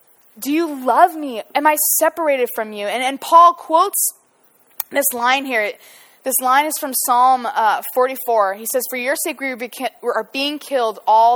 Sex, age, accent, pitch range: female, 20-39, American, 240-350 Hz